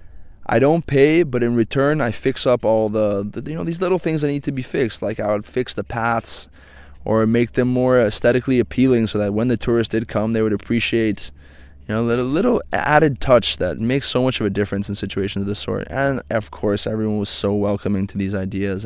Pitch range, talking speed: 100-115 Hz, 230 wpm